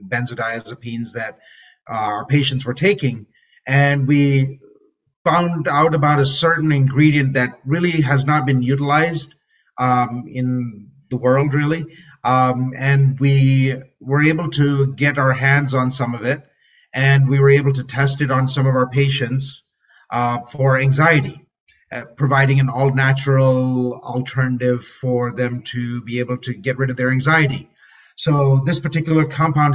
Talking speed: 145 wpm